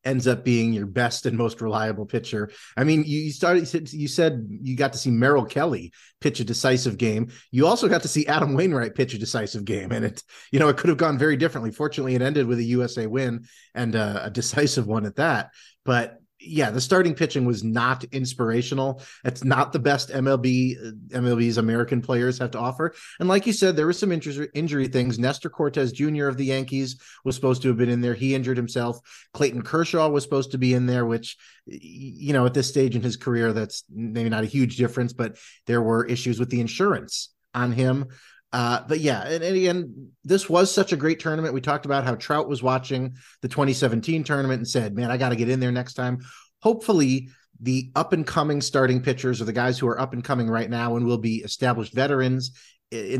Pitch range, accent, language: 120-145 Hz, American, English